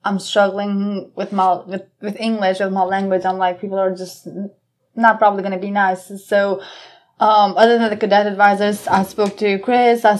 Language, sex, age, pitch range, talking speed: English, female, 20-39, 190-215 Hz, 195 wpm